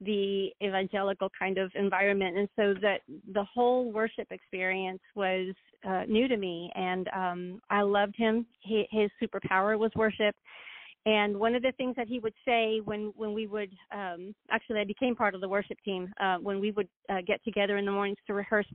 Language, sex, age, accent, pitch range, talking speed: English, female, 40-59, American, 200-245 Hz, 190 wpm